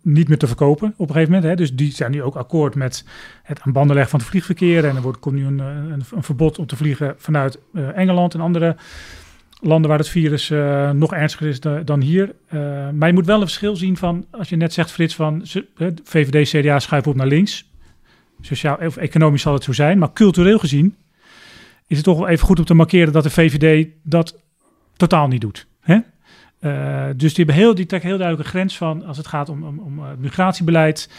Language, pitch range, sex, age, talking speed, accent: Dutch, 140-170 Hz, male, 40-59, 225 wpm, Dutch